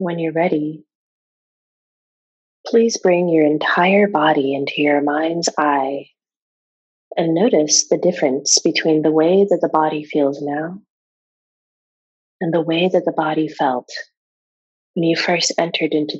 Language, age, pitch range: English, 30-49, 150-190 Hz